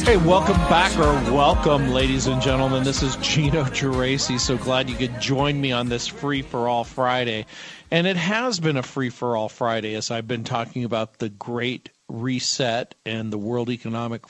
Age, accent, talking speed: 40-59, American, 190 wpm